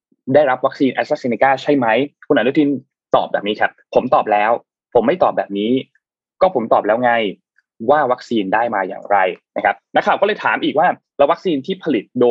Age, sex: 20-39, male